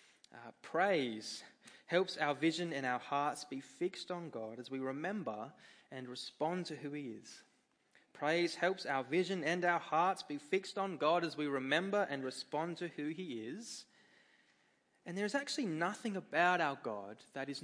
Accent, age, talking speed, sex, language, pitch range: Australian, 20-39, 175 wpm, male, English, 125-165 Hz